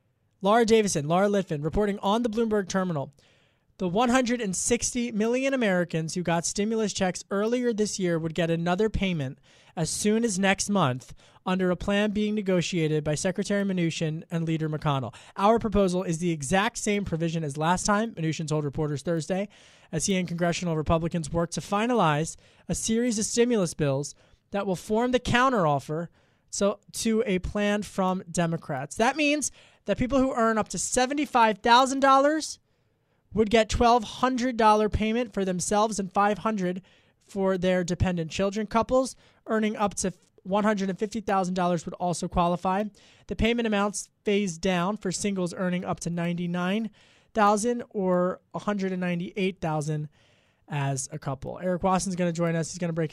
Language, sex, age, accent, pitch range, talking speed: English, male, 20-39, American, 165-215 Hz, 150 wpm